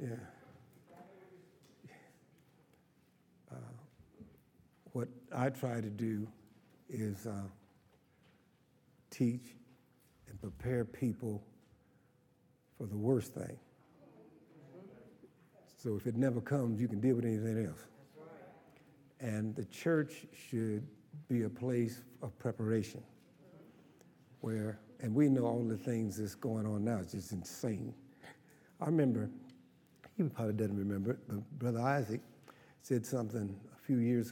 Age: 60-79